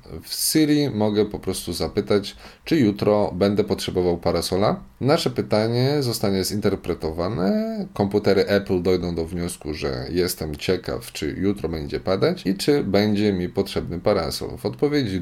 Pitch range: 90-110 Hz